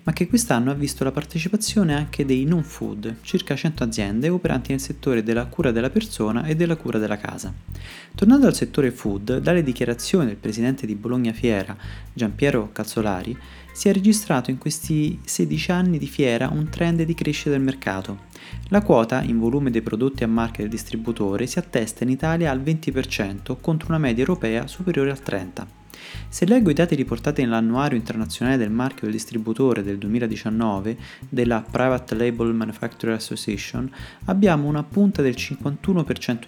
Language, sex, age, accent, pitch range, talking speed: Italian, male, 20-39, native, 115-155 Hz, 165 wpm